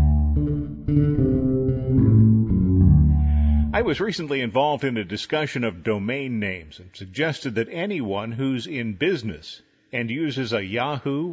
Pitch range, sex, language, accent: 110-145 Hz, male, English, American